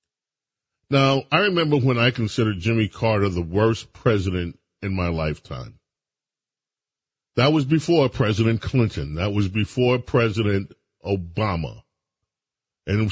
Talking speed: 115 wpm